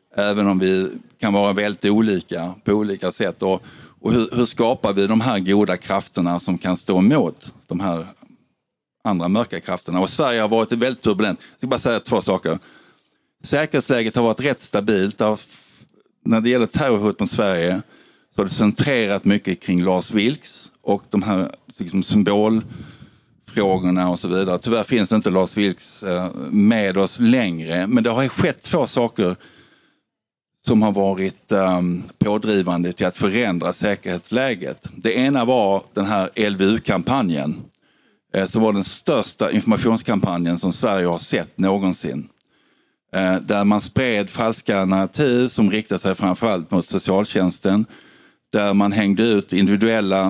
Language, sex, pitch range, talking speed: Swedish, male, 95-110 Hz, 150 wpm